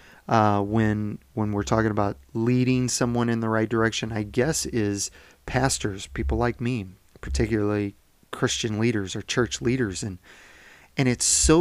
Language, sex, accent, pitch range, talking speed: English, male, American, 105-135 Hz, 150 wpm